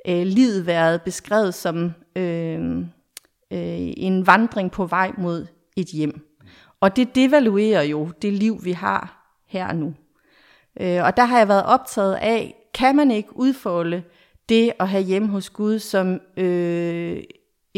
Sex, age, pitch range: female, 40-59, 170-215 Hz